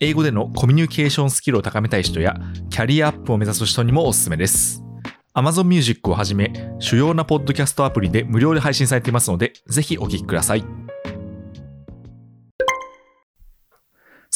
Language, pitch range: Japanese, 95-150 Hz